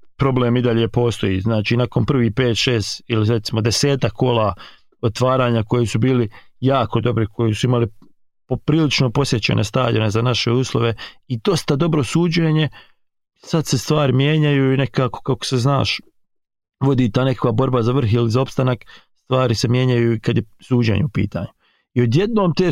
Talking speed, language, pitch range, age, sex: 165 wpm, English, 115-145 Hz, 40-59, male